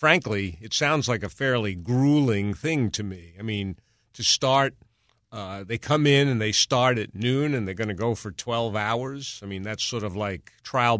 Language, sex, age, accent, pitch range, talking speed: English, male, 50-69, American, 105-135 Hz, 205 wpm